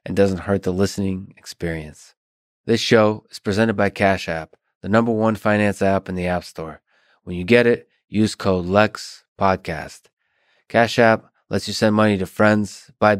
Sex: male